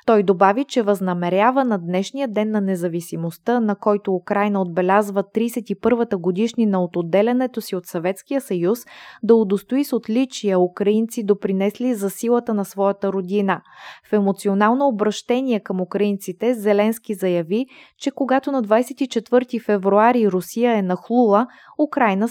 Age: 20-39